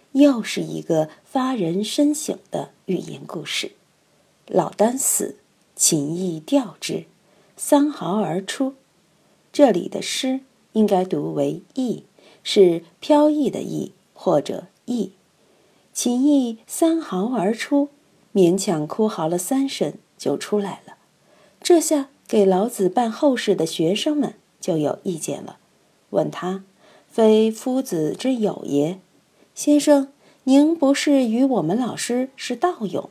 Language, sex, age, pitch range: Chinese, female, 50-69, 190-285 Hz